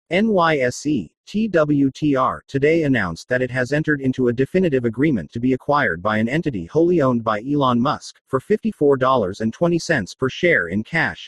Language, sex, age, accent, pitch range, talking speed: English, male, 40-59, American, 120-165 Hz, 150 wpm